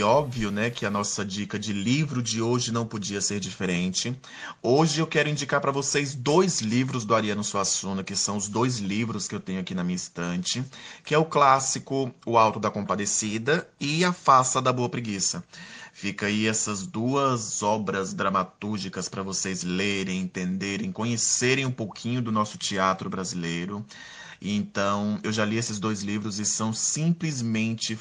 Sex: male